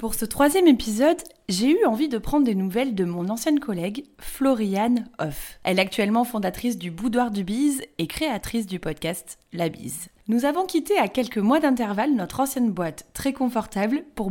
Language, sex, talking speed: French, female, 185 wpm